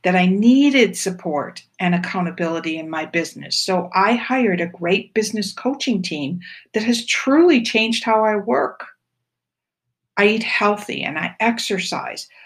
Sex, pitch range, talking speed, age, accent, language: female, 180-235 Hz, 145 wpm, 60-79, American, English